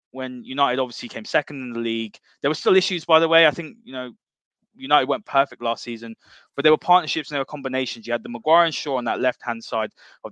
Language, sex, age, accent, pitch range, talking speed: English, male, 20-39, British, 120-150 Hz, 250 wpm